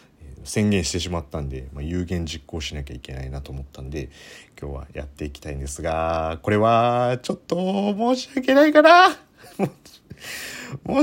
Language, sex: Japanese, male